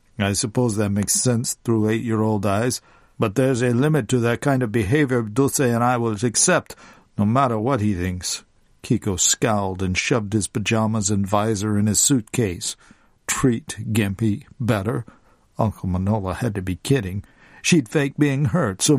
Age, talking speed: 50-69, 165 wpm